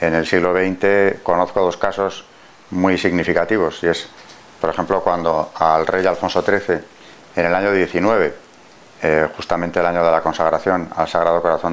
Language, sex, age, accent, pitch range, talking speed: Spanish, male, 40-59, Spanish, 85-105 Hz, 160 wpm